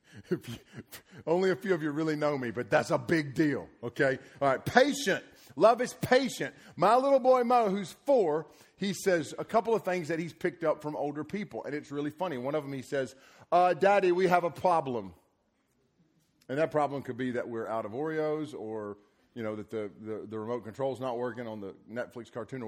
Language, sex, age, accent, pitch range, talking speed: English, male, 40-59, American, 135-190 Hz, 215 wpm